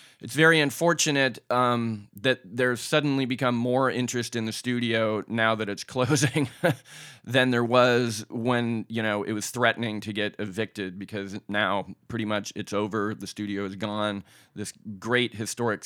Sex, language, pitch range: male, English, 105-130 Hz